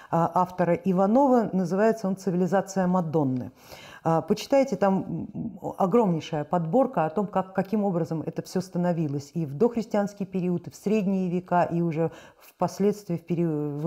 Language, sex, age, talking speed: Russian, female, 50-69, 130 wpm